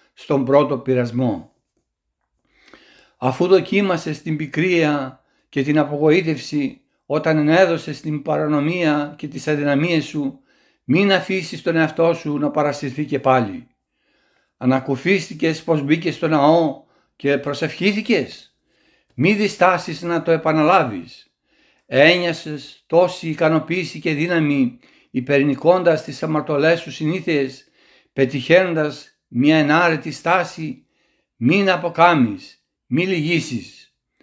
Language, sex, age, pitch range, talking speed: Greek, male, 60-79, 145-175 Hz, 100 wpm